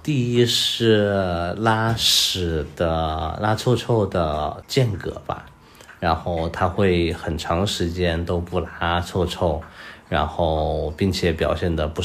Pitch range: 80-90 Hz